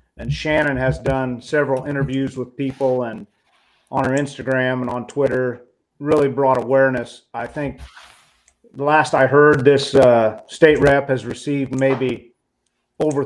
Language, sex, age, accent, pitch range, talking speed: English, male, 40-59, American, 125-145 Hz, 145 wpm